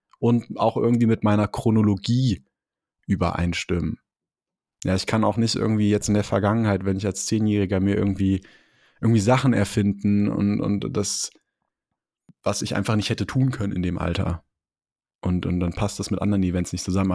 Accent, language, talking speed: German, German, 170 wpm